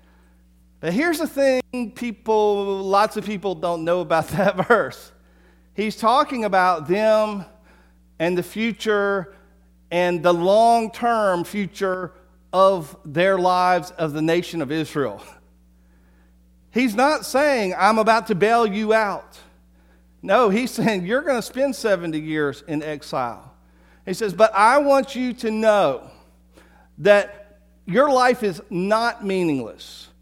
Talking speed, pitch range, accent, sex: 135 wpm, 160-225 Hz, American, male